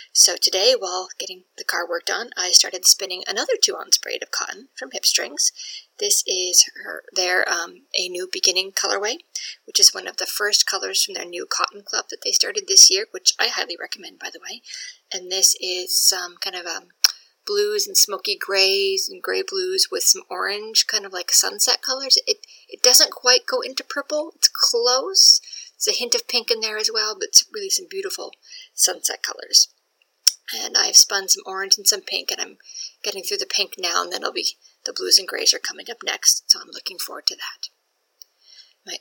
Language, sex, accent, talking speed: English, female, American, 205 wpm